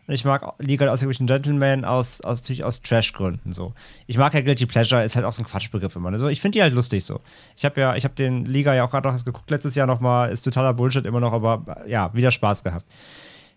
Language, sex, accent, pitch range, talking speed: German, male, German, 120-180 Hz, 250 wpm